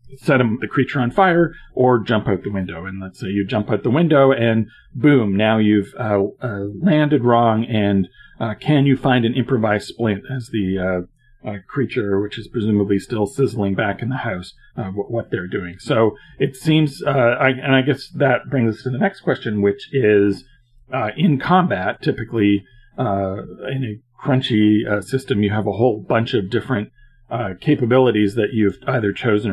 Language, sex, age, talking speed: English, male, 40-59, 185 wpm